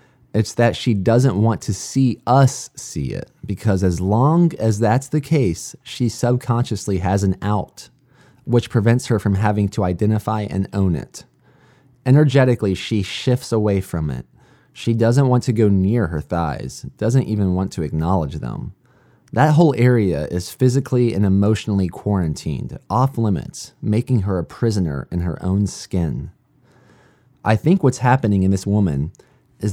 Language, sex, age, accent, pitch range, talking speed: English, male, 20-39, American, 95-130 Hz, 155 wpm